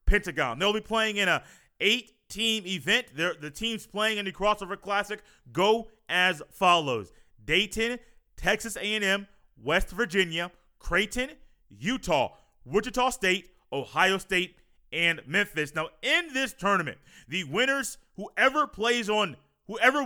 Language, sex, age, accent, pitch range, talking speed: English, male, 30-49, American, 175-220 Hz, 125 wpm